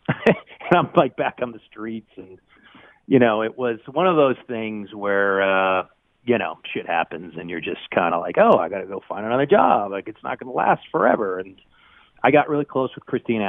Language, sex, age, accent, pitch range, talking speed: English, male, 40-59, American, 100-130 Hz, 225 wpm